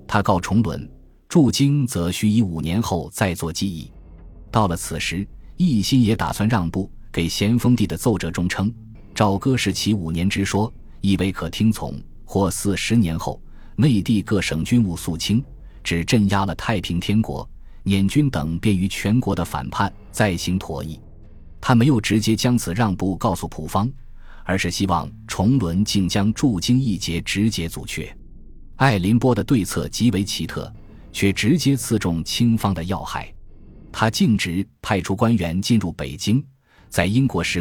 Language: Chinese